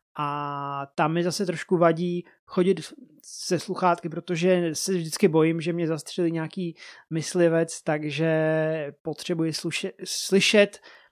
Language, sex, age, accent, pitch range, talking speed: Czech, male, 20-39, native, 160-195 Hz, 115 wpm